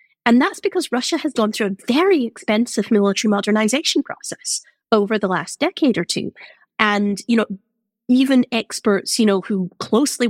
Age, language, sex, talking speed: 30-49, English, female, 165 wpm